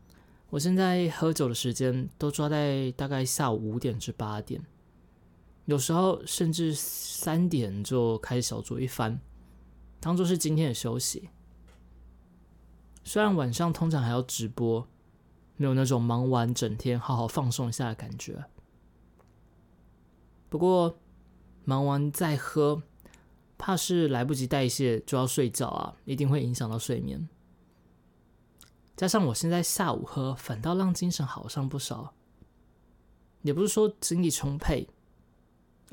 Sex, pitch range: male, 110-150 Hz